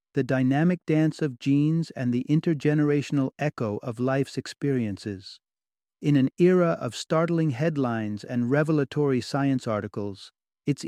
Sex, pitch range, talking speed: male, 125-150 Hz, 125 wpm